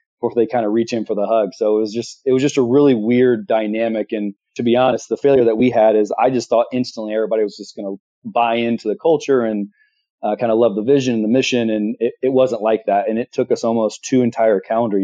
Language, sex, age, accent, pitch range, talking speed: English, male, 30-49, American, 105-125 Hz, 265 wpm